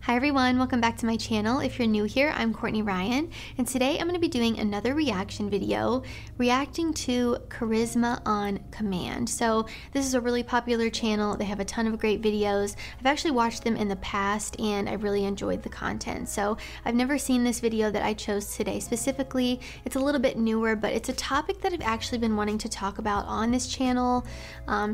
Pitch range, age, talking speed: 210-250 Hz, 20-39, 210 wpm